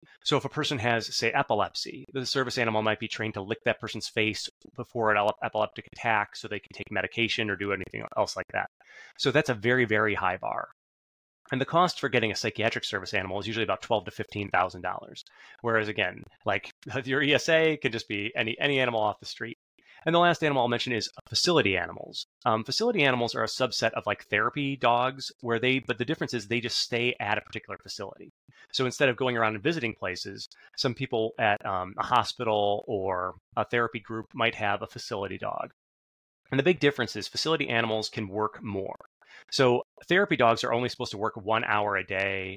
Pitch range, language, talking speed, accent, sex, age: 105-130 Hz, English, 205 wpm, American, male, 30-49